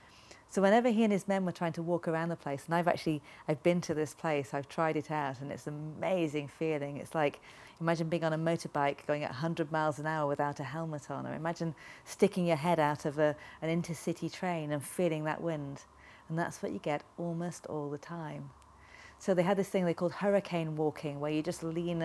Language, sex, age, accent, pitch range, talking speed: English, female, 40-59, British, 150-180 Hz, 225 wpm